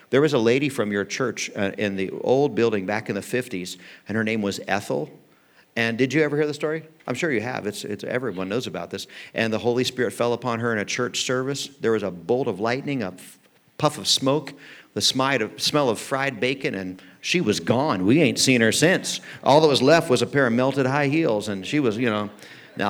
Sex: male